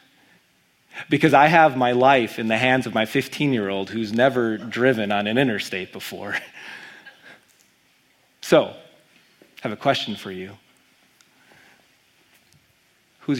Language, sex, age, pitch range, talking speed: English, male, 30-49, 115-170 Hz, 115 wpm